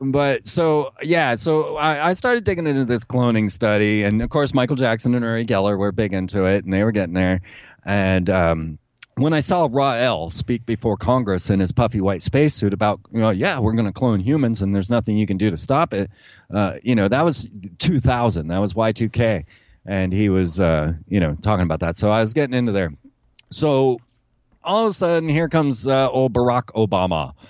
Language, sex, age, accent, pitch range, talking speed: English, male, 30-49, American, 100-135 Hz, 210 wpm